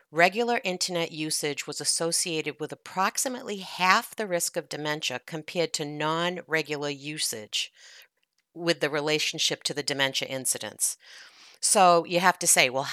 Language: English